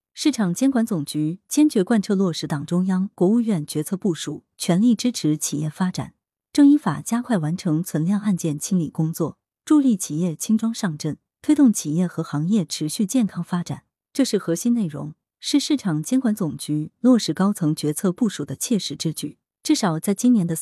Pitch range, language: 155-220 Hz, Chinese